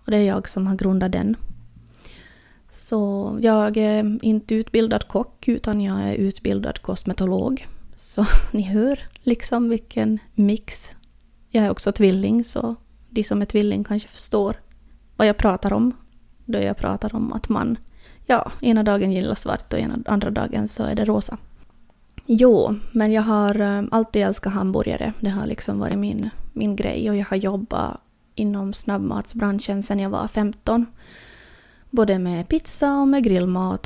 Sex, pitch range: female, 195-225 Hz